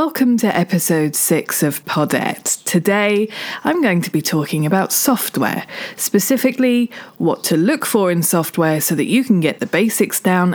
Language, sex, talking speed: English, female, 165 wpm